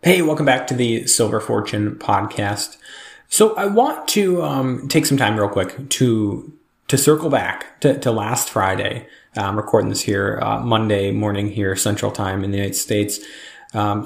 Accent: American